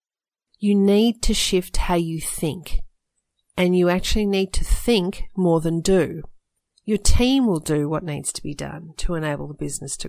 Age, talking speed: 40-59, 180 wpm